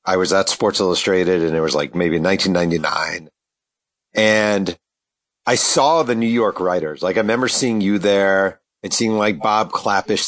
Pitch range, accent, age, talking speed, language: 100-125 Hz, American, 40-59, 170 wpm, English